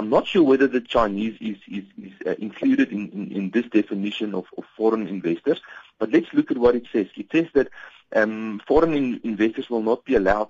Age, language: 40-59, English